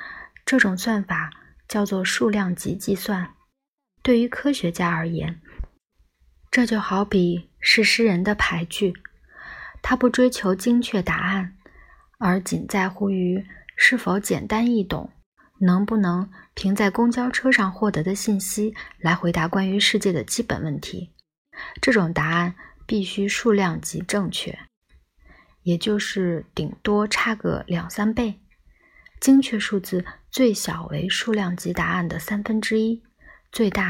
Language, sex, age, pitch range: Chinese, female, 20-39, 180-220 Hz